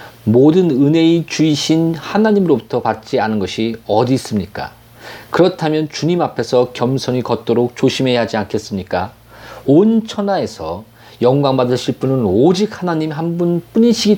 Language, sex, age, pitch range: Korean, male, 40-59, 115-165 Hz